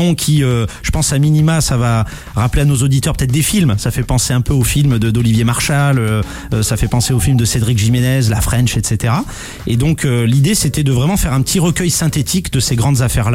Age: 30-49